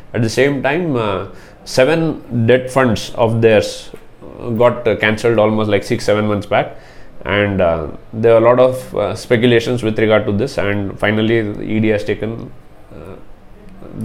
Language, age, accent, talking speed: English, 20-39, Indian, 160 wpm